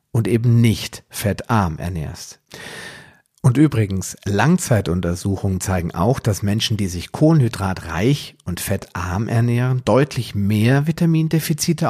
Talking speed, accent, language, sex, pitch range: 105 wpm, German, German, male, 95-125 Hz